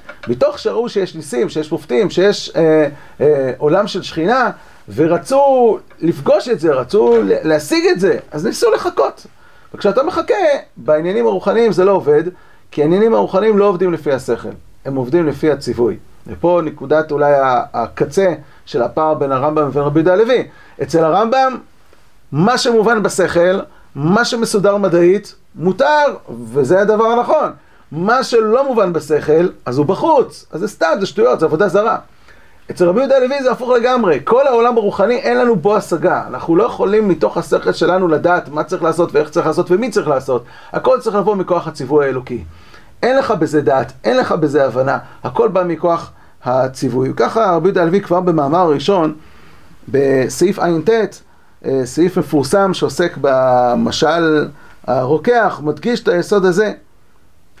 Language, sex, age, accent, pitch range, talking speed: Hebrew, male, 40-59, native, 150-215 Hz, 145 wpm